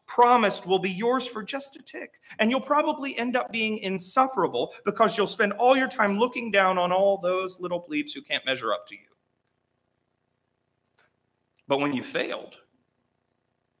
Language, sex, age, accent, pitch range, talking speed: English, male, 30-49, American, 160-225 Hz, 165 wpm